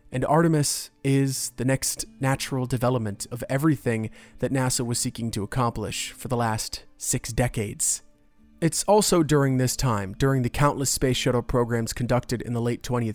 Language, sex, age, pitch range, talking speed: English, male, 30-49, 115-145 Hz, 160 wpm